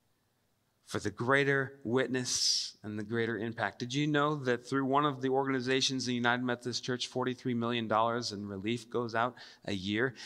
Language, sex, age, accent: English, male, 30-49, American